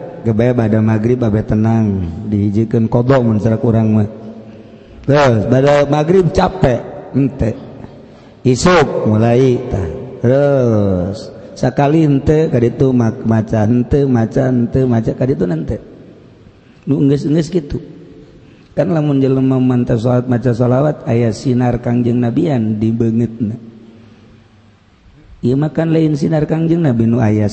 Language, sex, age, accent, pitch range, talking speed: Indonesian, male, 50-69, native, 110-130 Hz, 115 wpm